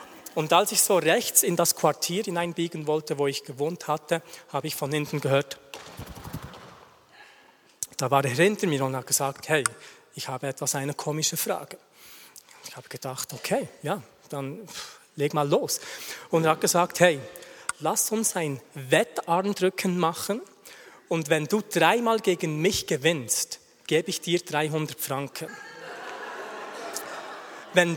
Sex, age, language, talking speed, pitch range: male, 40-59, German, 140 wpm, 150-190 Hz